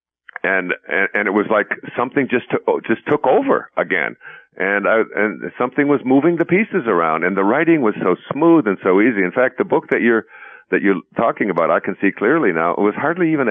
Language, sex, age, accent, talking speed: English, male, 50-69, American, 220 wpm